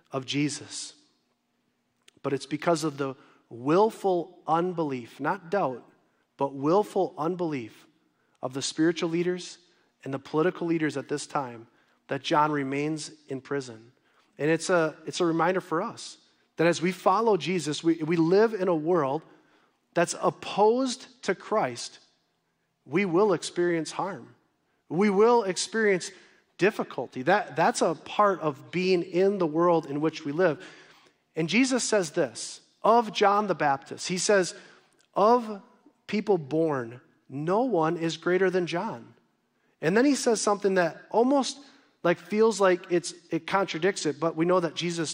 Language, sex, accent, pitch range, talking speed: English, male, American, 155-200 Hz, 150 wpm